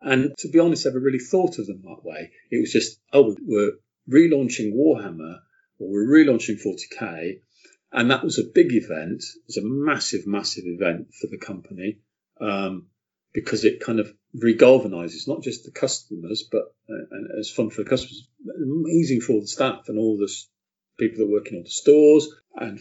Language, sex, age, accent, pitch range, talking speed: English, male, 40-59, British, 105-150 Hz, 185 wpm